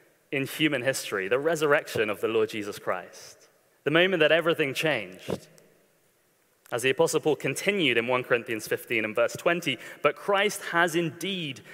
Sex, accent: male, British